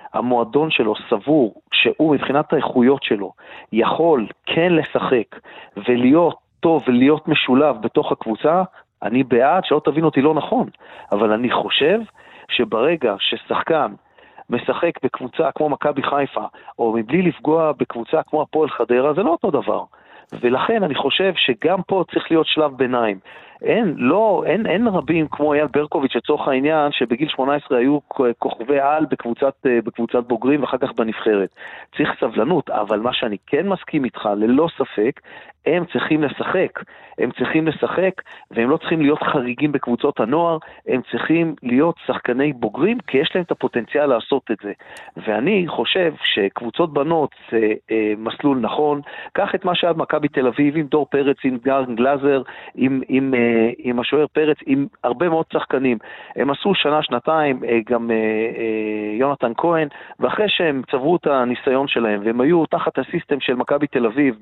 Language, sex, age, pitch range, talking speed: Hebrew, male, 40-59, 125-160 Hz, 145 wpm